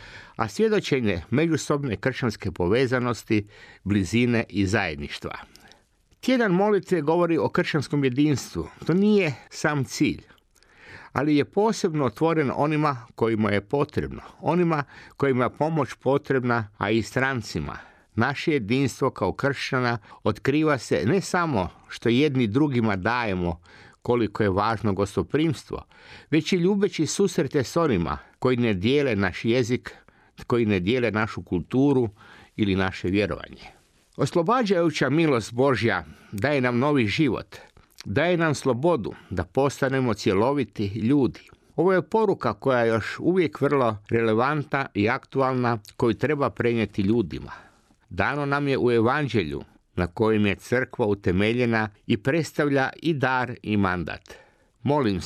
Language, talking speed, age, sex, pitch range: Croatian, 125 wpm, 50-69, male, 105-145 Hz